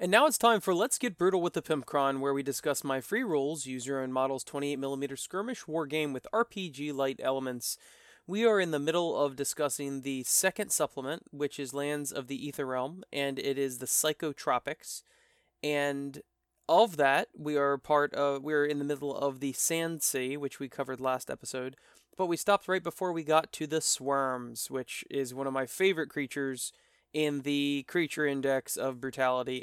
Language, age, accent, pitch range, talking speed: English, 20-39, American, 135-175 Hz, 190 wpm